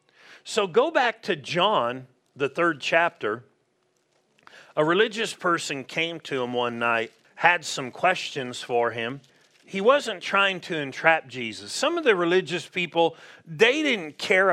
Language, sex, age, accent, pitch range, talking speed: English, male, 40-59, American, 135-185 Hz, 145 wpm